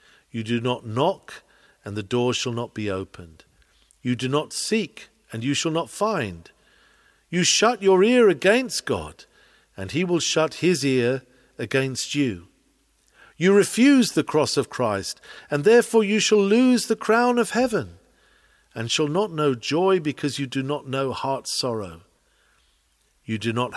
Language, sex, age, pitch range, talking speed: English, male, 50-69, 110-160 Hz, 160 wpm